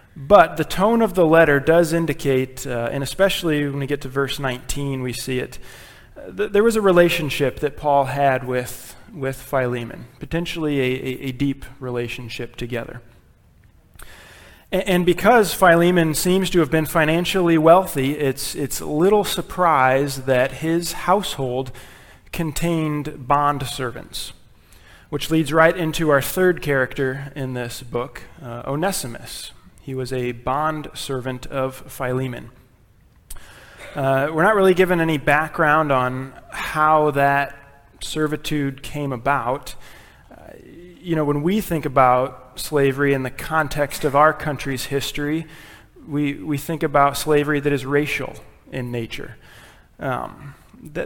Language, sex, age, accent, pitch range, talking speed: English, male, 30-49, American, 130-160 Hz, 135 wpm